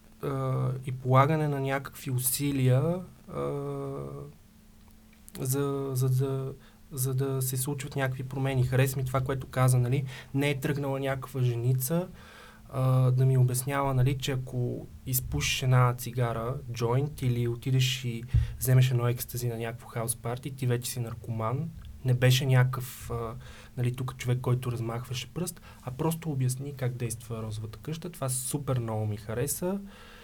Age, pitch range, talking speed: 20-39, 120-135 Hz, 145 wpm